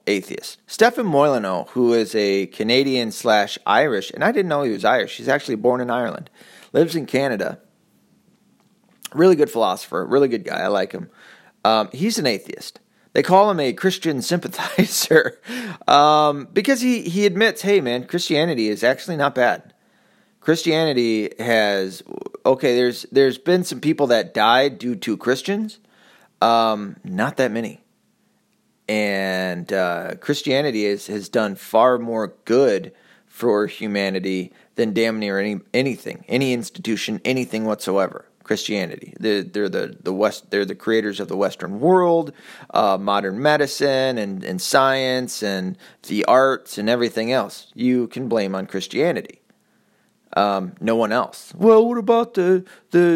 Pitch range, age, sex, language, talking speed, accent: 105-175 Hz, 30-49, male, English, 145 wpm, American